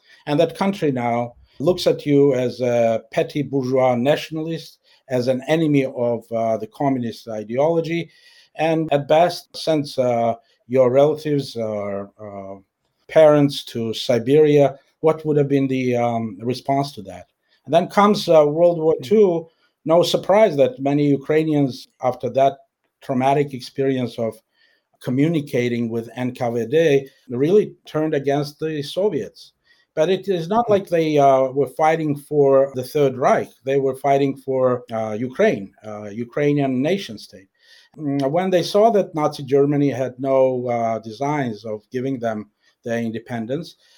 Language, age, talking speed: English, 50-69, 140 wpm